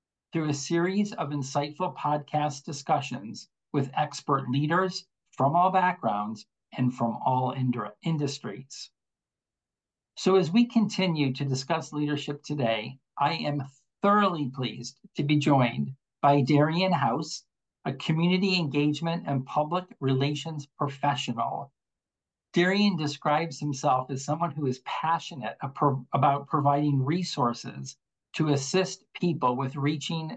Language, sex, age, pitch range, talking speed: English, male, 50-69, 135-165 Hz, 115 wpm